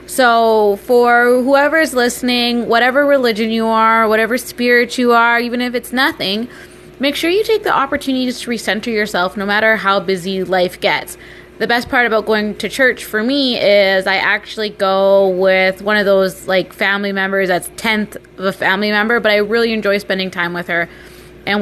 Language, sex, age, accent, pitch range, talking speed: English, female, 20-39, American, 190-240 Hz, 185 wpm